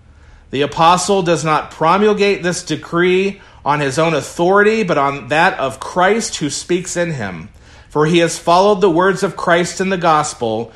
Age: 40-59